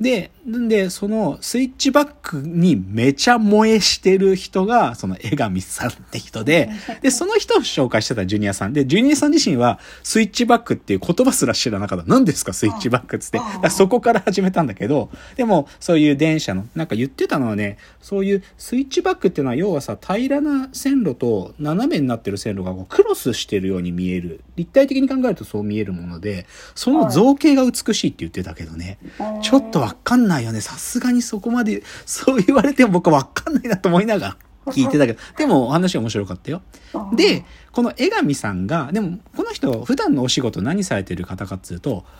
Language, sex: Japanese, male